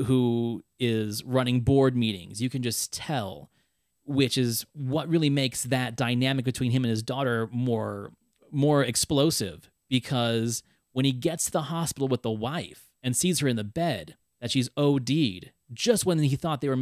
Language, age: English, 30-49